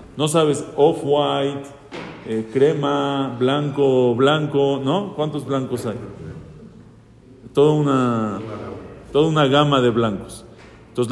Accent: Mexican